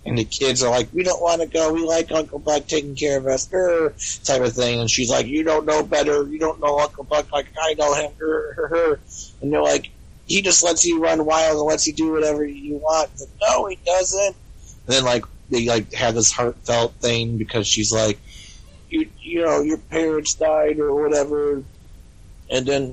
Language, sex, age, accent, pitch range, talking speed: English, male, 30-49, American, 110-160 Hz, 215 wpm